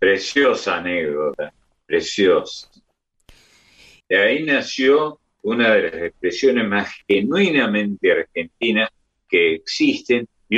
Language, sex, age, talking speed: Spanish, male, 50-69, 90 wpm